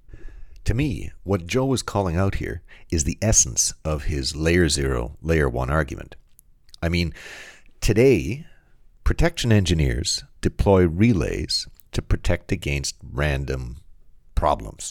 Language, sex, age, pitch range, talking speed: English, male, 50-69, 75-105 Hz, 120 wpm